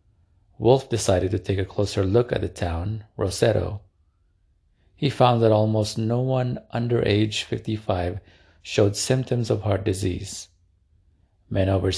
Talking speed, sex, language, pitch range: 135 wpm, male, English, 95-110 Hz